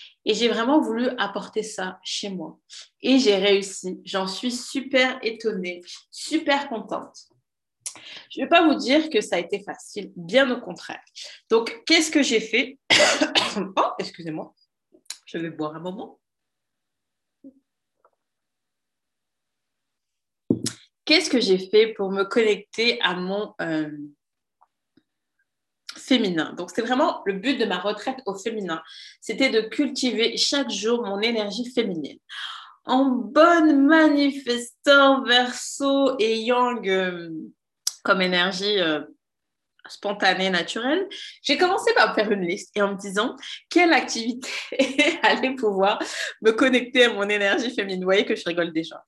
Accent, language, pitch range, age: French, French, 195-270 Hz, 30-49